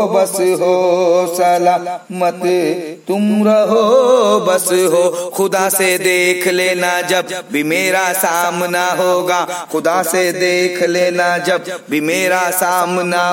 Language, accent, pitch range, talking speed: Hindi, native, 180-230 Hz, 115 wpm